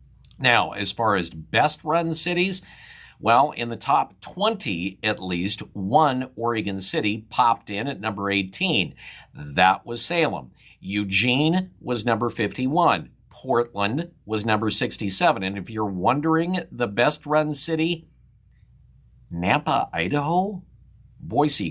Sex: male